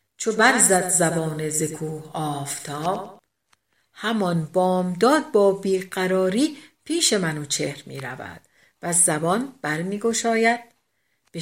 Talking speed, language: 90 wpm, Persian